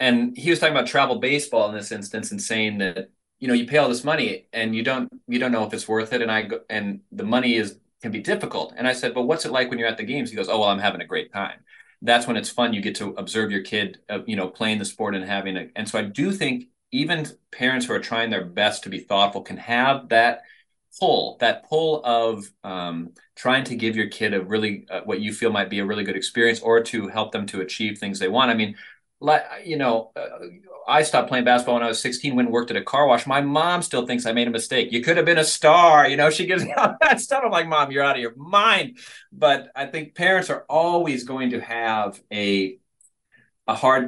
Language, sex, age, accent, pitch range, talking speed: English, male, 30-49, American, 110-150 Hz, 260 wpm